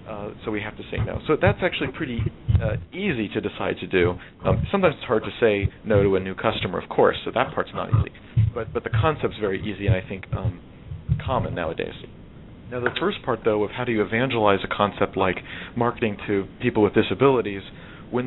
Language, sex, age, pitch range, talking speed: English, male, 40-59, 100-125 Hz, 215 wpm